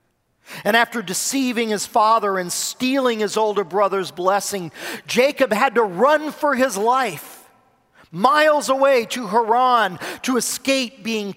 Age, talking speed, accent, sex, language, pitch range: 40-59, 130 wpm, American, male, English, 160-240 Hz